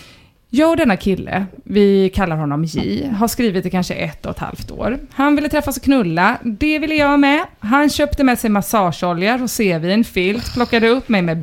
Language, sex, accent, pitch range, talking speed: English, female, Swedish, 195-285 Hz, 195 wpm